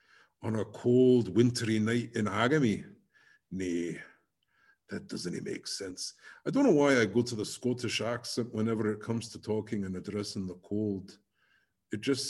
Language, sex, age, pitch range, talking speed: English, male, 50-69, 105-135 Hz, 160 wpm